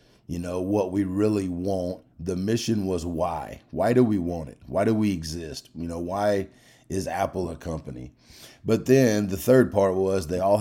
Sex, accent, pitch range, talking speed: male, American, 90-105 Hz, 190 wpm